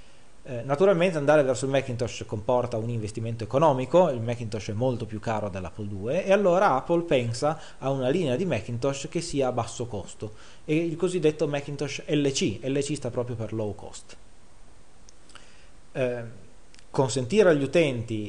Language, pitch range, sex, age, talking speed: English, 110-155 Hz, male, 30-49, 150 wpm